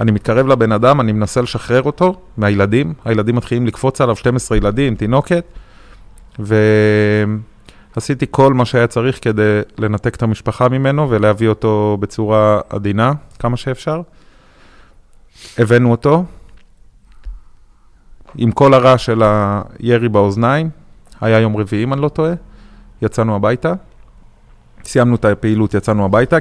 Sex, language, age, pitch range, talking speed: male, Hebrew, 30-49, 105-130 Hz, 125 wpm